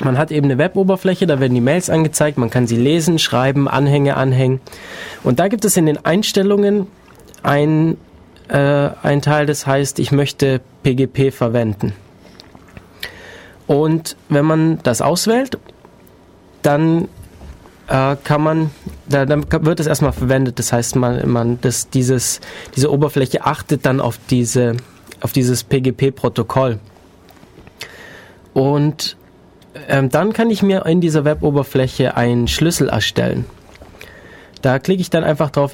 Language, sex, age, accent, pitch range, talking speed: German, male, 20-39, German, 130-160 Hz, 140 wpm